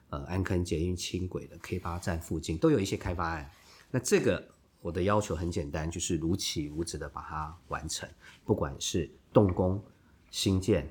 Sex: male